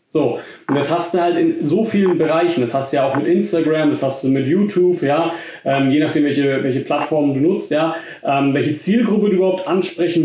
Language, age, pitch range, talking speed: German, 40-59, 145-180 Hz, 220 wpm